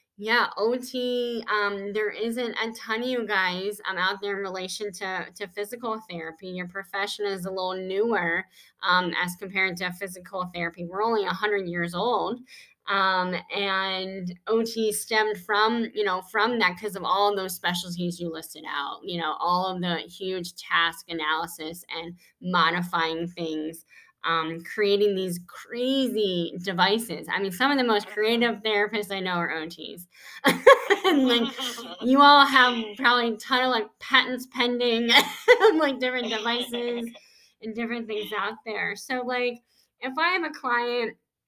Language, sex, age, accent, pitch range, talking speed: English, female, 20-39, American, 180-230 Hz, 160 wpm